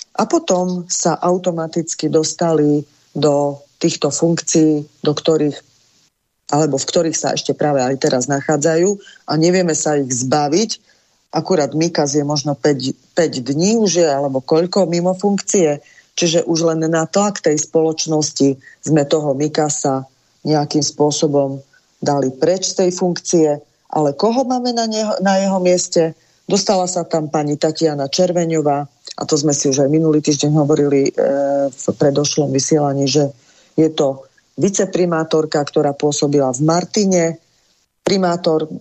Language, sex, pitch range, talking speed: Slovak, female, 145-170 Hz, 140 wpm